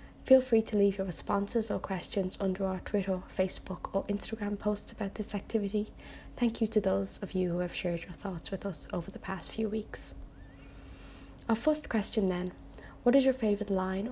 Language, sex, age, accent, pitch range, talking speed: English, female, 20-39, British, 185-215 Hz, 190 wpm